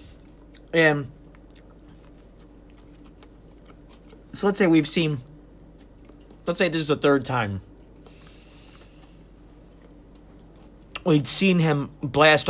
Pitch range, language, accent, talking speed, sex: 130-170 Hz, English, American, 80 wpm, male